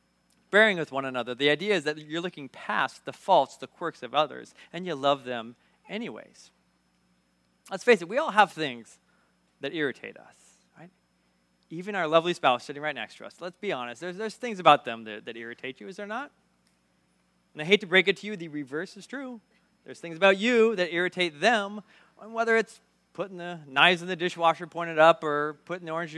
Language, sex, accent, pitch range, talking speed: English, male, American, 140-210 Hz, 210 wpm